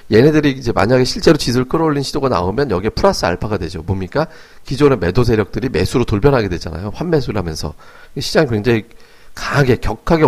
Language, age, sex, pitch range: Korean, 40-59, male, 105-155 Hz